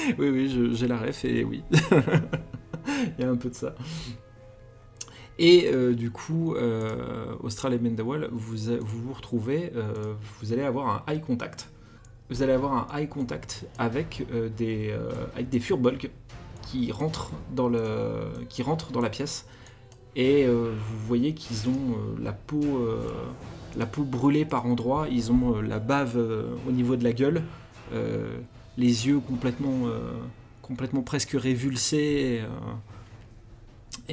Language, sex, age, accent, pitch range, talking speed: French, male, 30-49, French, 115-135 Hz, 145 wpm